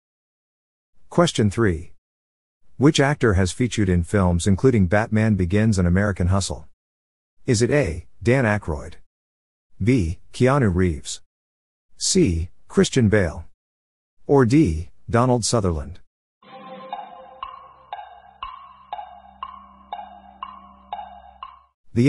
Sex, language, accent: male, English, American